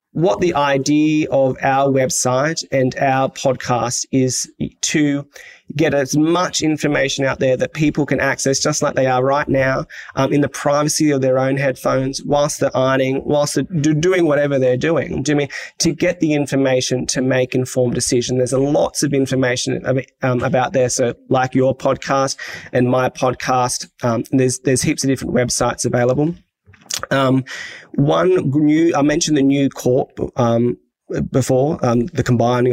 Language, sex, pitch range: English, male, 125-145 Hz